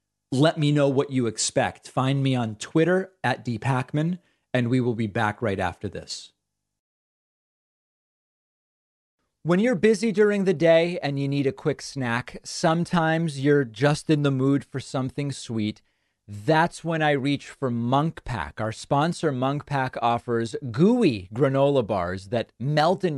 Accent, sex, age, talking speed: American, male, 40-59, 155 wpm